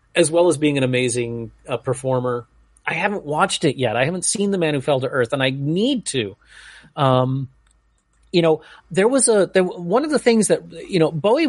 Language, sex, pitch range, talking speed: English, male, 125-170 Hz, 215 wpm